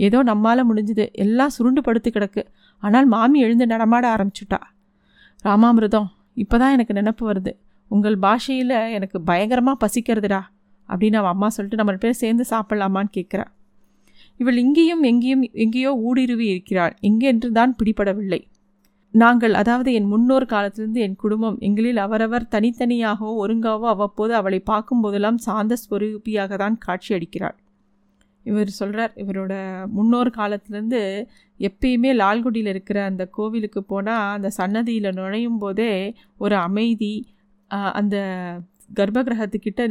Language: Tamil